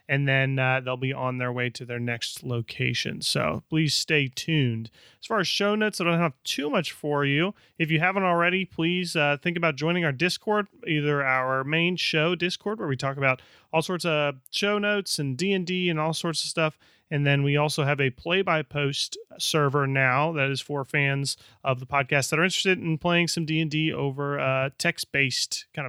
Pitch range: 140-170 Hz